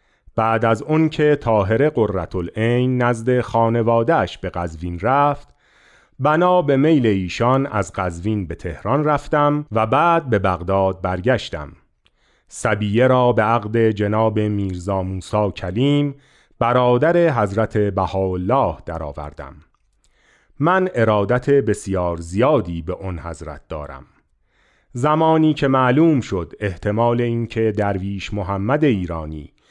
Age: 40-59